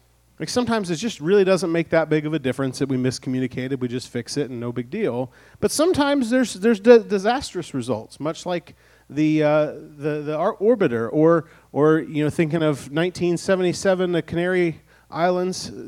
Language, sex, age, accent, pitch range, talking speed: English, male, 30-49, American, 135-185 Hz, 180 wpm